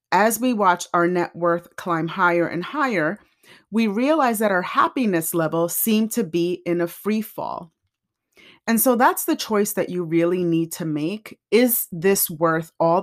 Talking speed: 175 wpm